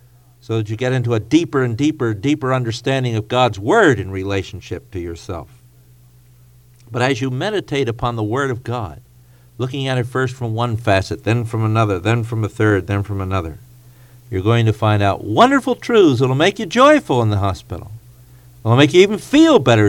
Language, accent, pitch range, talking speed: English, American, 110-130 Hz, 200 wpm